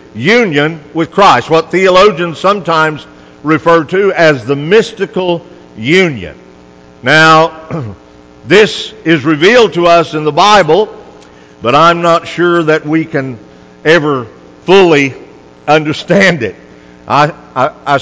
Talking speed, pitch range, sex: 115 wpm, 115-185 Hz, male